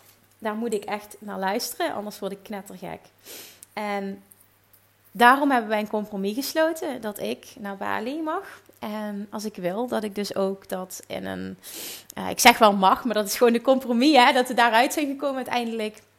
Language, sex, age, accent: Dutch, female, 30-49, Dutch